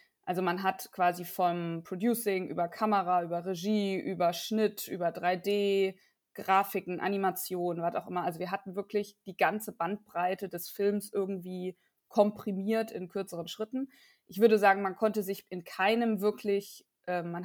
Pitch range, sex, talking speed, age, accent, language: 175-215 Hz, female, 150 wpm, 20-39, German, German